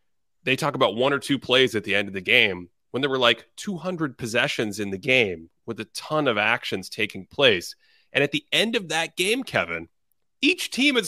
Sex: male